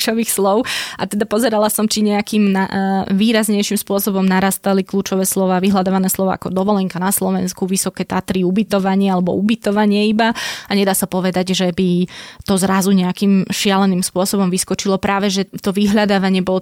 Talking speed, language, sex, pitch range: 155 wpm, Slovak, female, 185-205 Hz